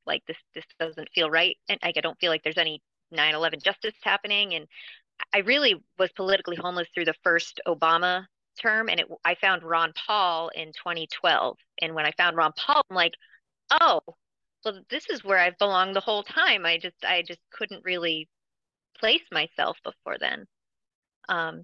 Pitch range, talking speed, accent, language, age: 155-175 Hz, 185 wpm, American, English, 30-49